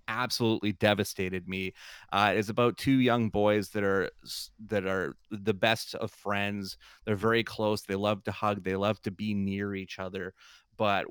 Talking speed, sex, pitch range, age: 175 wpm, male, 95-110 Hz, 30-49